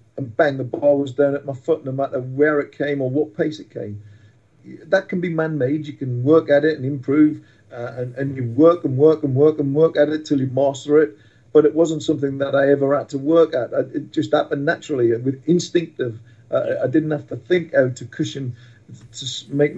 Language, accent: English, British